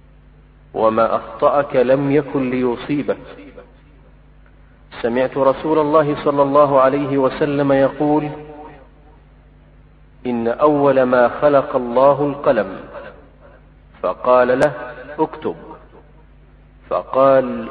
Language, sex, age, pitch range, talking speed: Arabic, male, 50-69, 125-145 Hz, 80 wpm